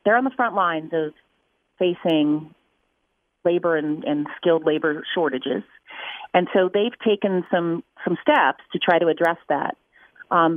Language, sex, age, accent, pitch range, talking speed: English, female, 40-59, American, 155-190 Hz, 150 wpm